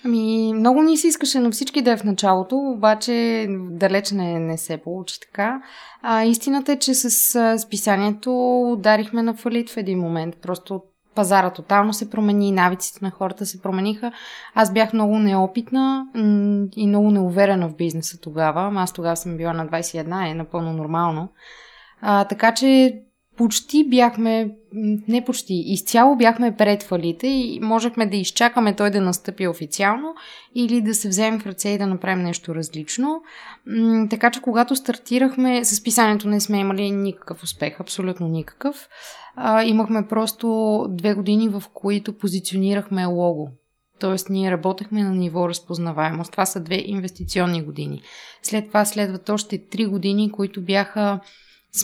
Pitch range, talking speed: 185-230 Hz, 150 wpm